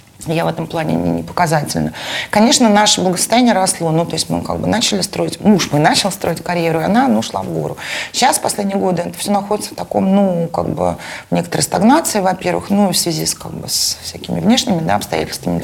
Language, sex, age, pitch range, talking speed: Russian, female, 30-49, 155-210 Hz, 215 wpm